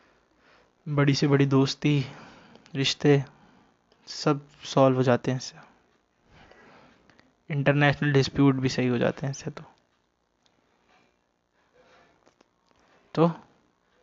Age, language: 20-39, Hindi